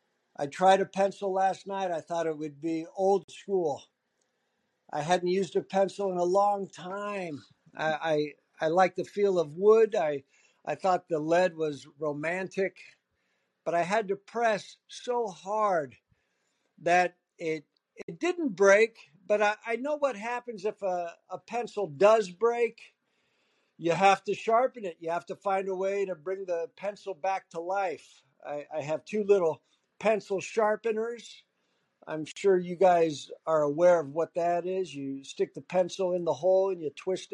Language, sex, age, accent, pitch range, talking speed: English, male, 60-79, American, 170-215 Hz, 170 wpm